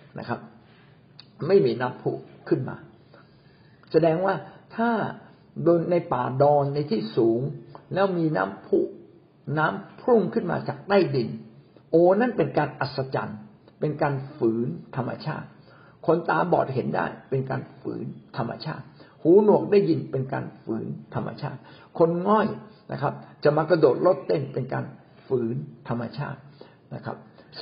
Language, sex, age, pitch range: Thai, male, 60-79, 125-185 Hz